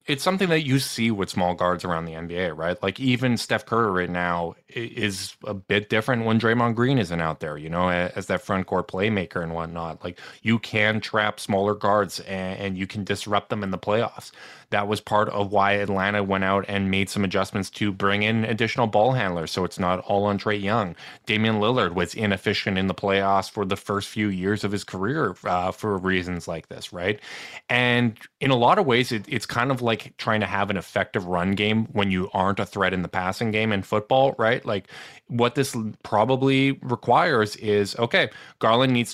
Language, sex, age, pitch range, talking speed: English, male, 20-39, 95-115 Hz, 205 wpm